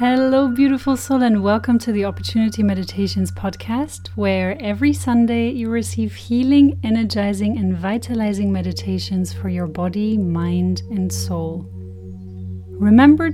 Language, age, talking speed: English, 30-49, 120 wpm